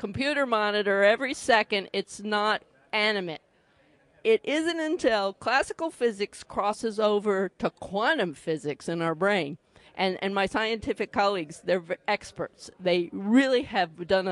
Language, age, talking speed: English, 50-69, 135 wpm